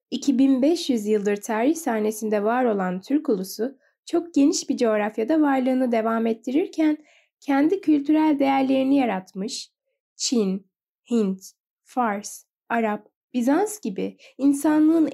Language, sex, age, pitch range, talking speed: Turkish, female, 10-29, 220-285 Hz, 105 wpm